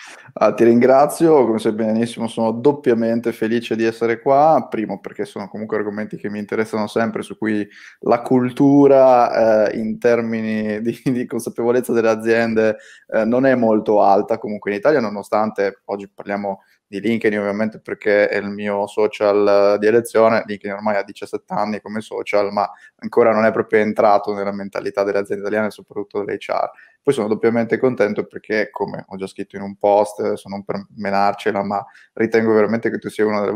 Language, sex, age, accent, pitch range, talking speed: Italian, male, 20-39, native, 105-115 Hz, 175 wpm